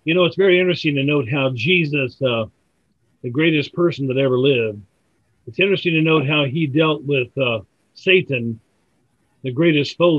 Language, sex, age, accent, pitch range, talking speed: English, male, 50-69, American, 130-175 Hz, 170 wpm